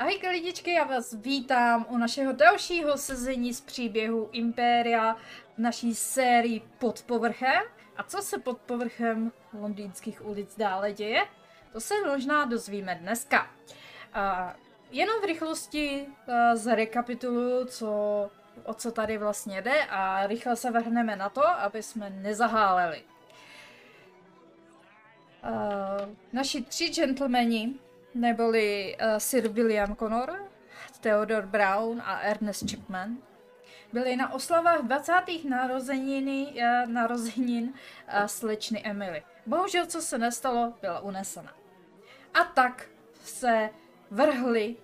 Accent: native